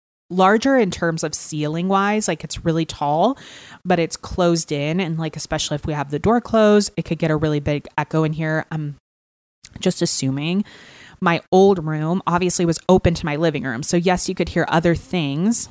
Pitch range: 150-175 Hz